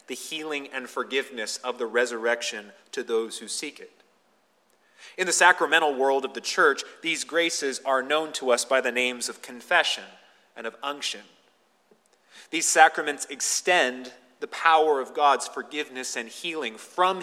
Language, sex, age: English, male, 30-49